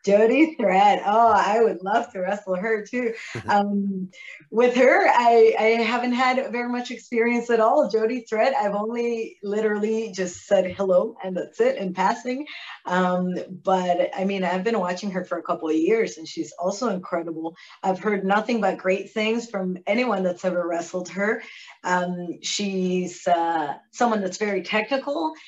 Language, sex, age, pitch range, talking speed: English, female, 30-49, 180-225 Hz, 165 wpm